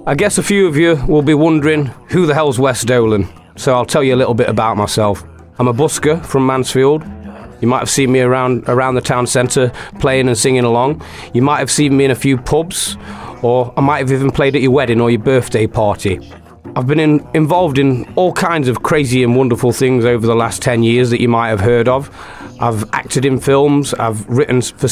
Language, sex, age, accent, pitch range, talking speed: English, male, 30-49, British, 115-140 Hz, 225 wpm